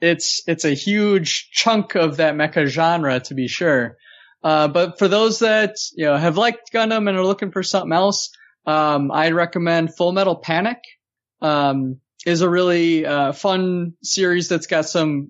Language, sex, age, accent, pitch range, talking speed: English, male, 20-39, American, 145-195 Hz, 175 wpm